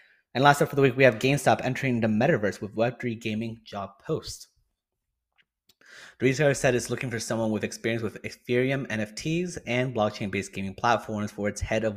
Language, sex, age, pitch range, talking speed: English, male, 20-39, 105-130 Hz, 185 wpm